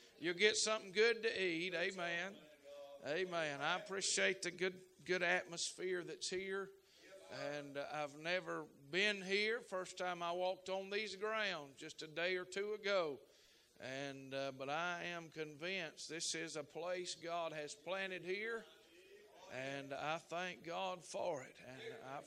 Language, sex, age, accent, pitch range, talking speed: English, male, 50-69, American, 170-230 Hz, 155 wpm